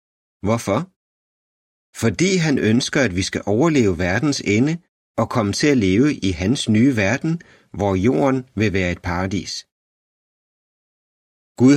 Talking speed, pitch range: 135 wpm, 100-130 Hz